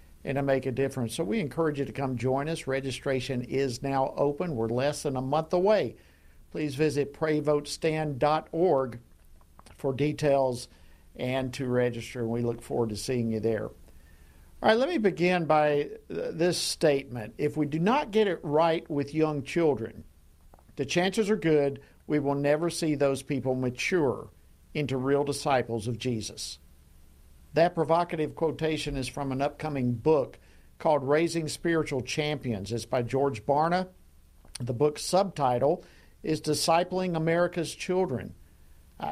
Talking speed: 150 wpm